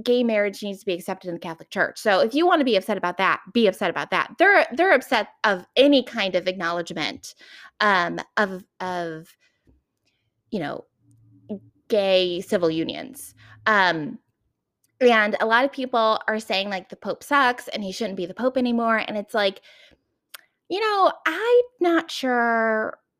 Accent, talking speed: American, 170 wpm